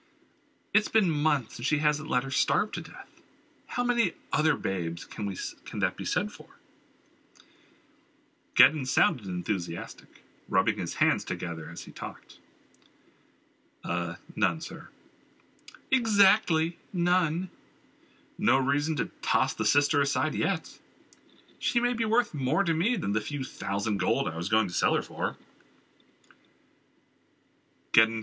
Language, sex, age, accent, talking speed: English, male, 40-59, American, 140 wpm